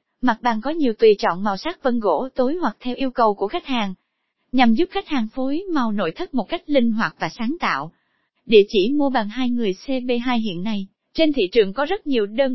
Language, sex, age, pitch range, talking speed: Vietnamese, female, 20-39, 215-280 Hz, 235 wpm